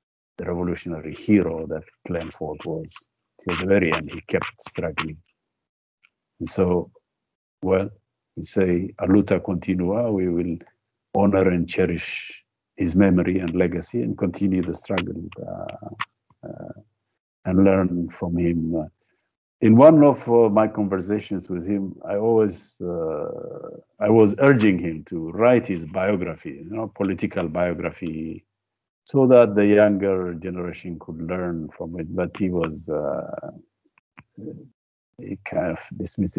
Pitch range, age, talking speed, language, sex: 85-105 Hz, 50-69, 130 wpm, English, male